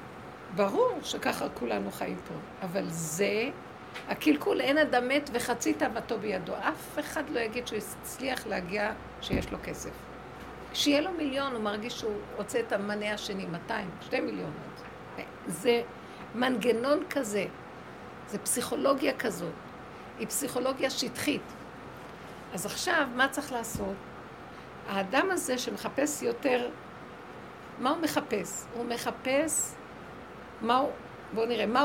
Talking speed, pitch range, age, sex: 120 wpm, 225-285 Hz, 60-79, female